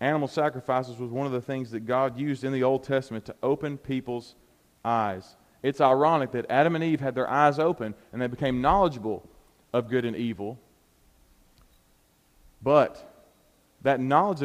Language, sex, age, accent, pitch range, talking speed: English, male, 40-59, American, 110-145 Hz, 160 wpm